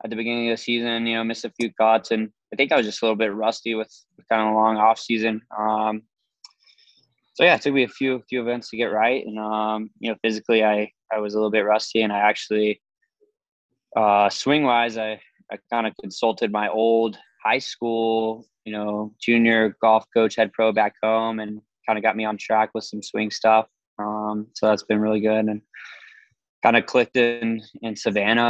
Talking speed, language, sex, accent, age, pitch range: 215 wpm, English, male, American, 20-39, 105-115 Hz